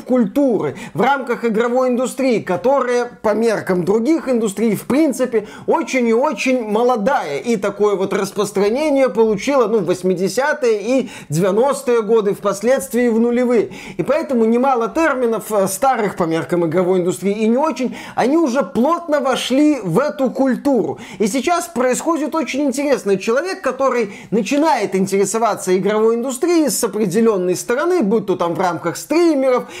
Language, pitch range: Russian, 205-270 Hz